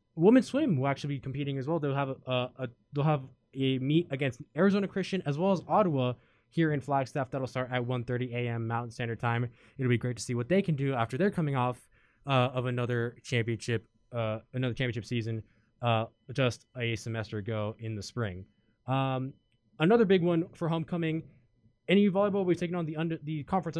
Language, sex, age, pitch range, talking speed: English, male, 20-39, 120-150 Hz, 200 wpm